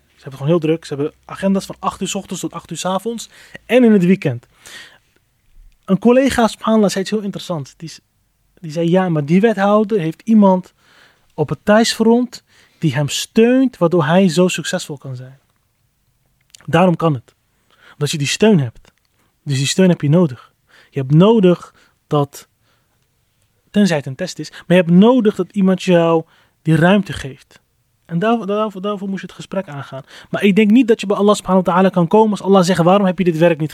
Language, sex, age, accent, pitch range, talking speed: Dutch, male, 30-49, Dutch, 145-195 Hz, 205 wpm